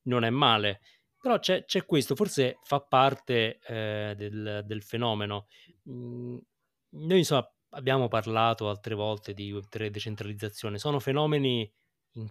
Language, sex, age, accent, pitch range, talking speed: Italian, male, 20-39, native, 105-130 Hz, 120 wpm